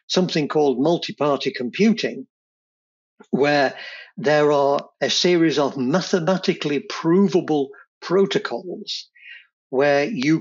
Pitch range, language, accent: 135-190 Hz, English, British